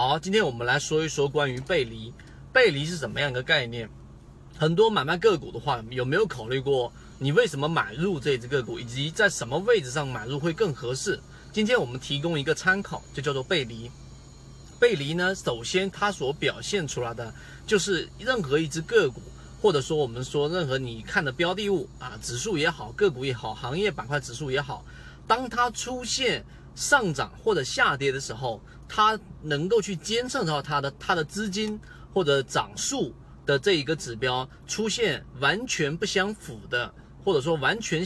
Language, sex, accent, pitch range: Chinese, male, native, 125-190 Hz